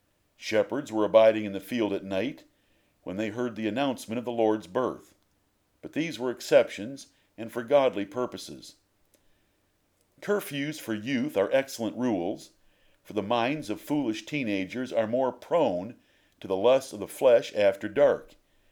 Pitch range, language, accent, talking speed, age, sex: 105-140 Hz, English, American, 155 wpm, 50-69, male